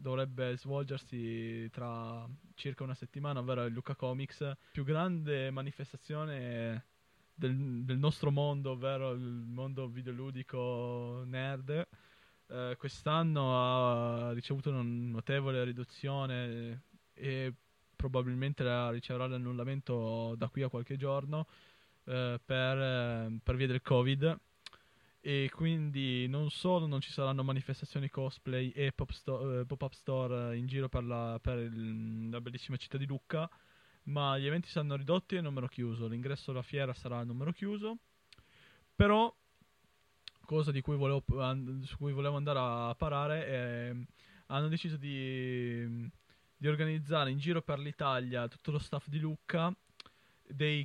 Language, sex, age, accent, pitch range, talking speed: Italian, male, 20-39, native, 125-145 Hz, 130 wpm